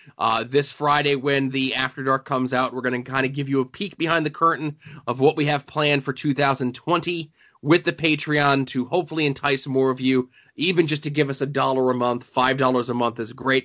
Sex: male